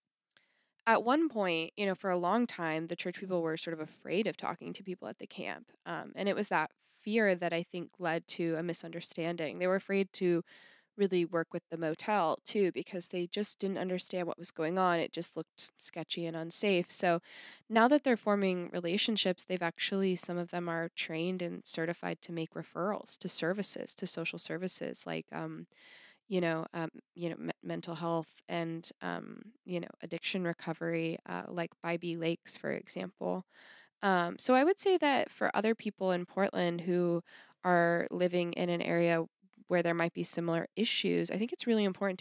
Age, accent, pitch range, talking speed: 20-39, American, 165-195 Hz, 190 wpm